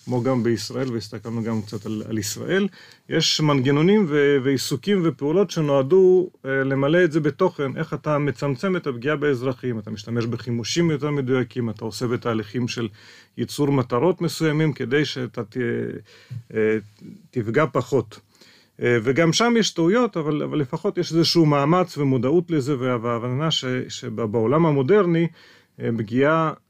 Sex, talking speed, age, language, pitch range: male, 135 wpm, 40-59, Hebrew, 120-155 Hz